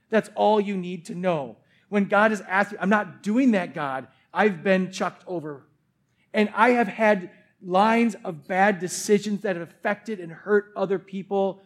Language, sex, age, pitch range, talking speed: English, male, 40-59, 180-230 Hz, 180 wpm